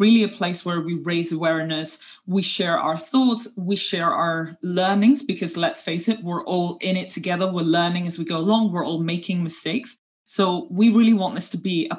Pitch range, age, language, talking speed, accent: 165-200 Hz, 20-39, English, 210 wpm, British